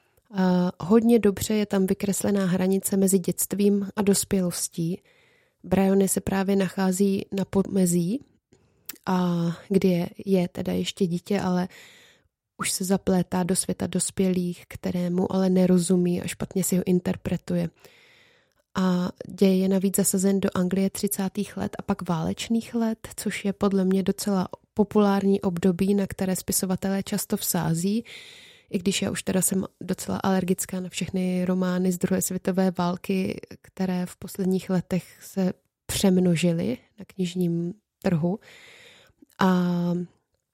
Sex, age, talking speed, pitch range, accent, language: female, 20-39, 130 wpm, 185-200 Hz, native, Czech